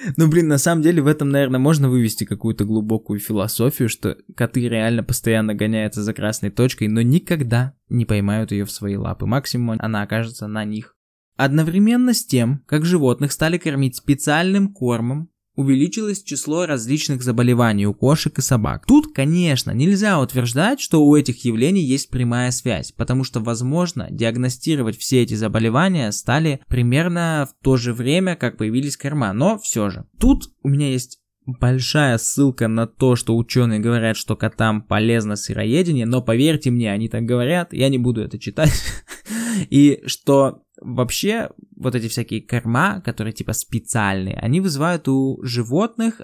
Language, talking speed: Russian, 155 wpm